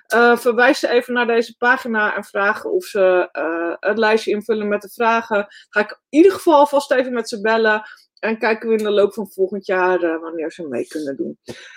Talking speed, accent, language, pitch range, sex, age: 220 wpm, Dutch, Dutch, 205-260 Hz, female, 20-39